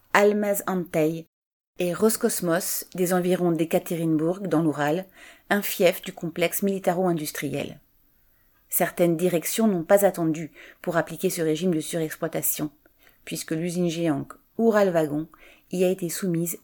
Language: French